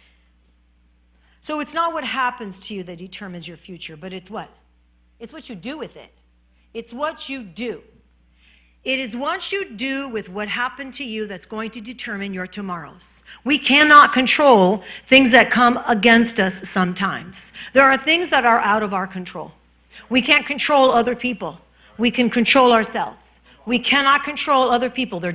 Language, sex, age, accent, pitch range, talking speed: English, female, 40-59, American, 205-285 Hz, 175 wpm